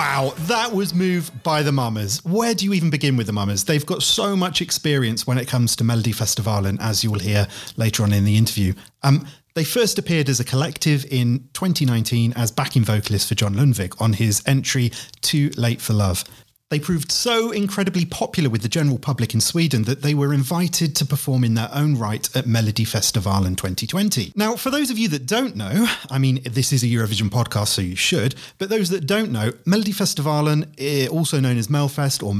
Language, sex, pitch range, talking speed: English, male, 115-165 Hz, 205 wpm